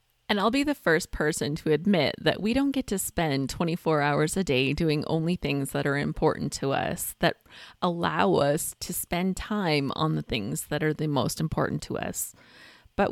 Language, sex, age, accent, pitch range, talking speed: English, female, 20-39, American, 150-195 Hz, 195 wpm